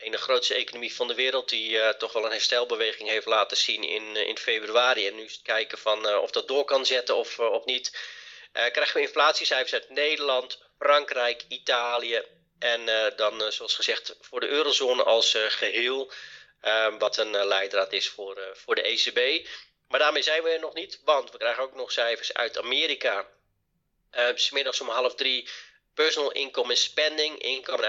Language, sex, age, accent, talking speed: Dutch, male, 30-49, Dutch, 195 wpm